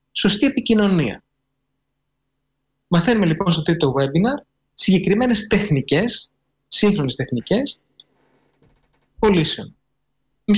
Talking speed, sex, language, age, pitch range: 75 wpm, male, Greek, 30-49, 140-195 Hz